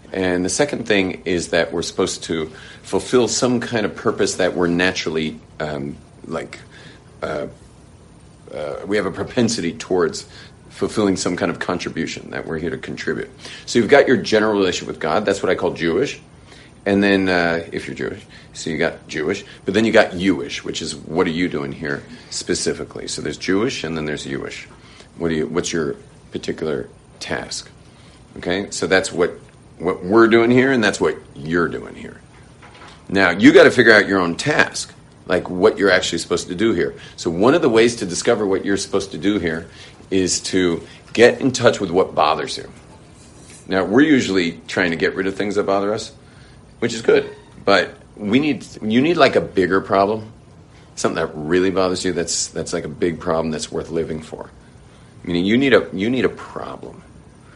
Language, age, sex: English, 40-59, male